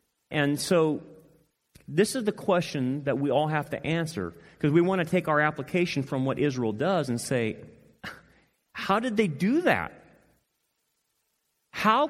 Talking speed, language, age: 155 wpm, English, 40-59